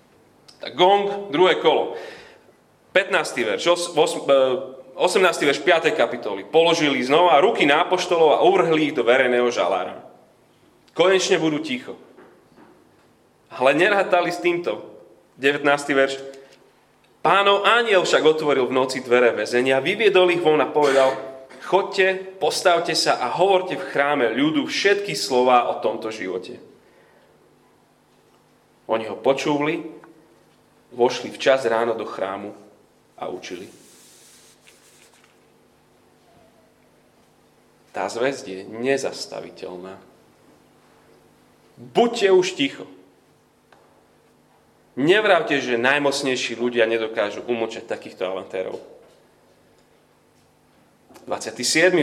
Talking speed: 90 wpm